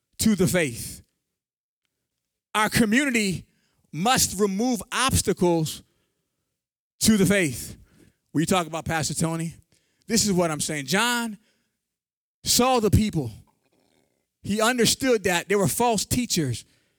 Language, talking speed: English, 115 wpm